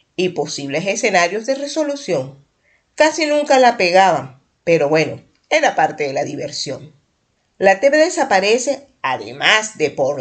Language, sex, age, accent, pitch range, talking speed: Spanish, female, 50-69, American, 165-260 Hz, 130 wpm